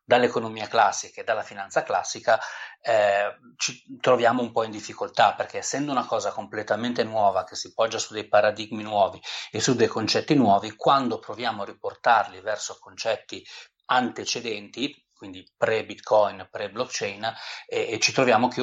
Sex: male